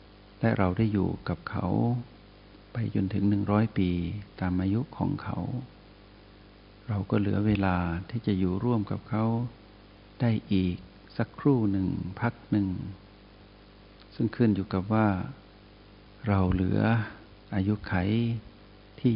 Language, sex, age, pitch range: Thai, male, 60-79, 95-110 Hz